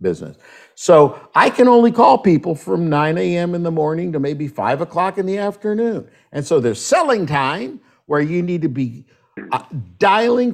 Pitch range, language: 130-205 Hz, English